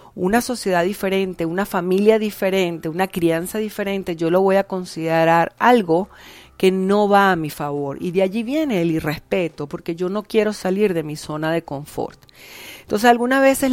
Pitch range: 170-215 Hz